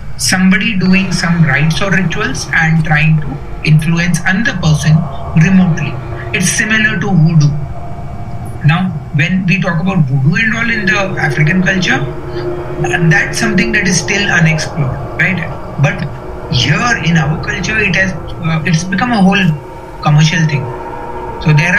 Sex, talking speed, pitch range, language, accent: male, 145 wpm, 150-180 Hz, Hindi, native